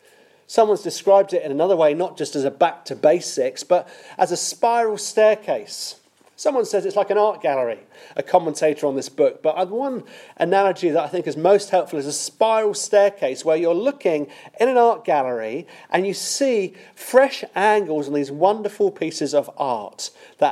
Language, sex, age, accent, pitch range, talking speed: English, male, 40-59, British, 155-215 Hz, 180 wpm